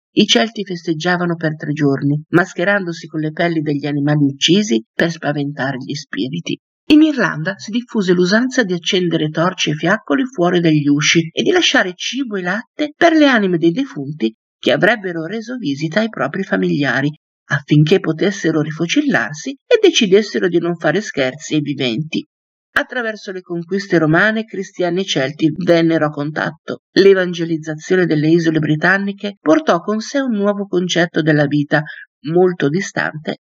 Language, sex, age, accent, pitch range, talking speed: Italian, male, 50-69, native, 155-215 Hz, 150 wpm